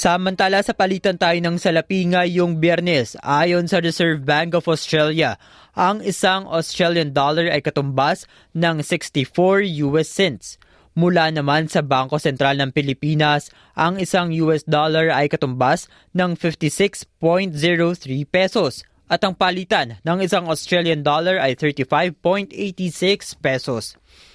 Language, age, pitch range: Filipino, 20-39, 150-185 Hz